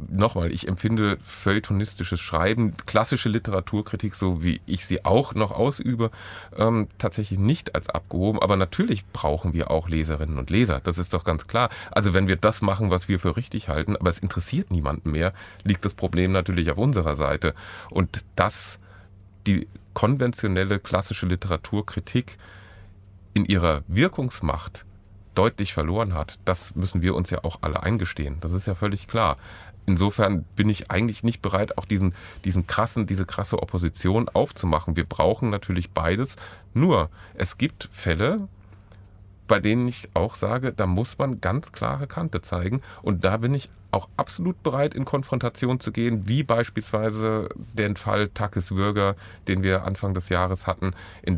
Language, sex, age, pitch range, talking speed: German, male, 30-49, 90-110 Hz, 160 wpm